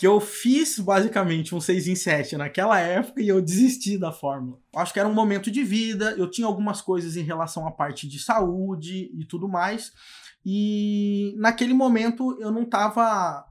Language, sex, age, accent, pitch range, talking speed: Portuguese, male, 20-39, Brazilian, 175-225 Hz, 180 wpm